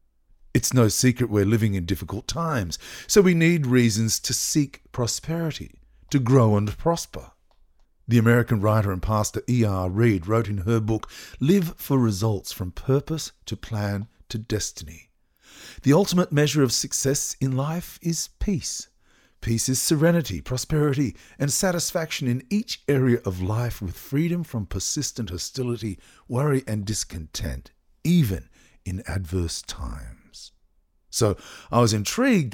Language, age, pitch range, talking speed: English, 50-69, 95-140 Hz, 140 wpm